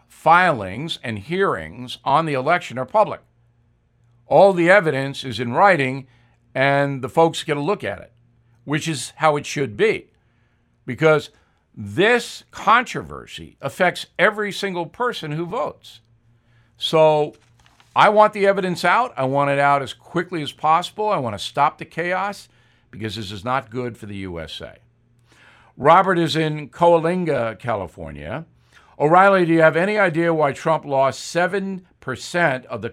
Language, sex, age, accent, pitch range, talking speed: English, male, 60-79, American, 120-170 Hz, 150 wpm